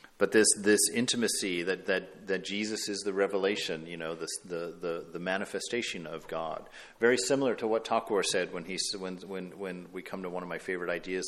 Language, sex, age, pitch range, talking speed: English, male, 50-69, 105-170 Hz, 205 wpm